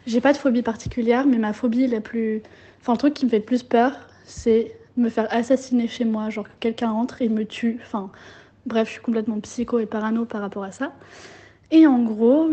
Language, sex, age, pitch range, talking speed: French, female, 20-39, 210-250 Hz, 230 wpm